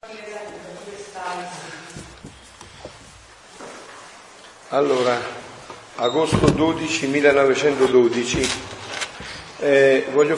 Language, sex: Italian, male